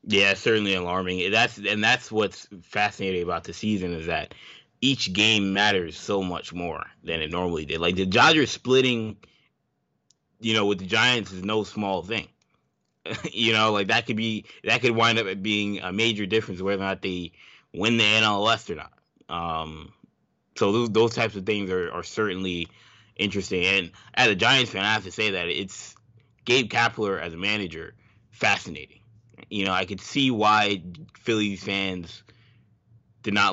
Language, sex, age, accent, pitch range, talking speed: English, male, 20-39, American, 95-115 Hz, 175 wpm